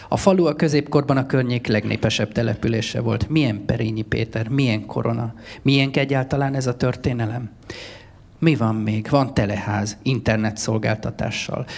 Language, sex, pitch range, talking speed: Hungarian, male, 110-135 Hz, 125 wpm